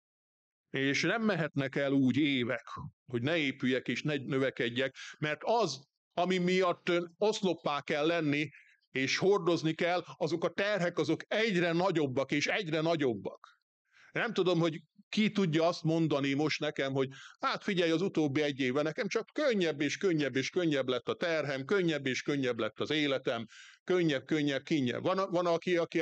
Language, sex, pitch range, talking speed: Hungarian, male, 135-180 Hz, 160 wpm